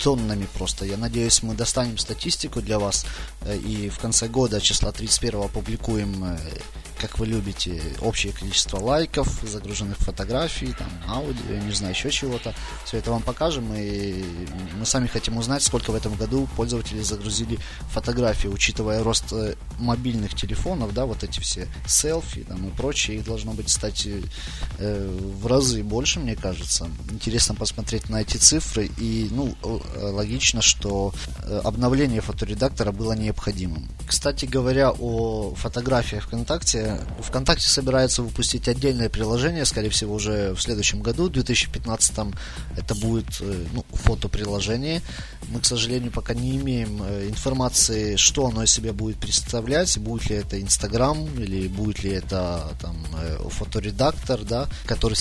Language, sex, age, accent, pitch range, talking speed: Russian, male, 20-39, native, 100-120 Hz, 140 wpm